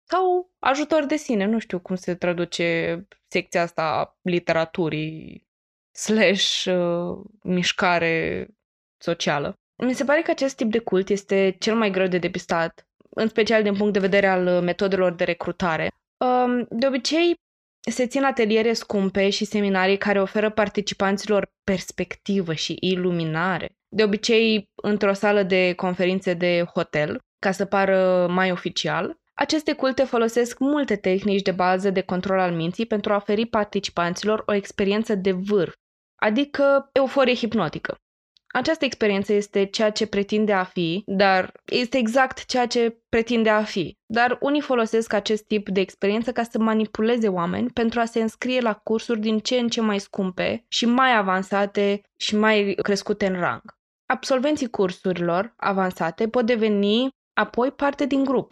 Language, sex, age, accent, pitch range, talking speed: Romanian, female, 20-39, native, 185-235 Hz, 150 wpm